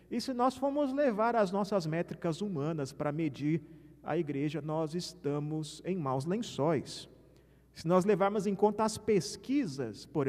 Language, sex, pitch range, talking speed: Portuguese, male, 150-235 Hz, 150 wpm